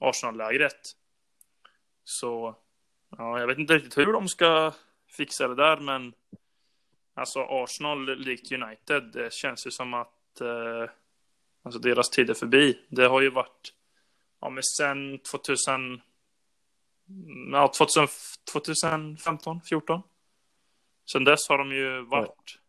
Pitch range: 120-145 Hz